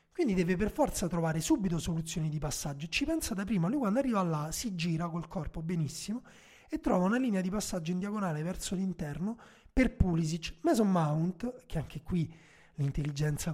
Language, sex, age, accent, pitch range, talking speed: Italian, male, 30-49, native, 160-205 Hz, 175 wpm